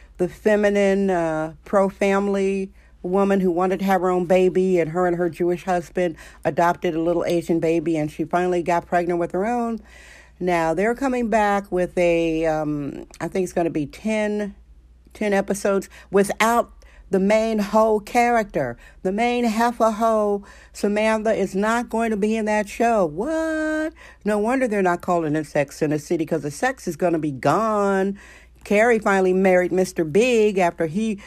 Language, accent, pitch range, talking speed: English, American, 175-215 Hz, 175 wpm